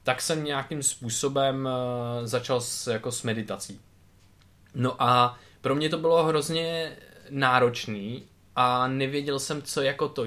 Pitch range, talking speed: 115-160 Hz, 135 wpm